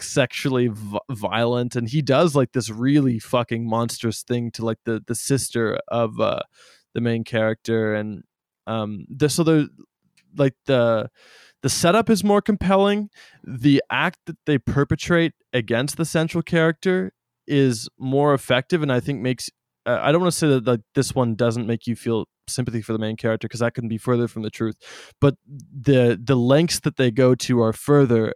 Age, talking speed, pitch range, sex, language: 20-39, 180 wpm, 115-135 Hz, male, English